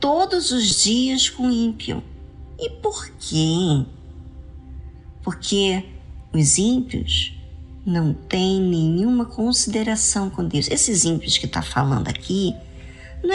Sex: male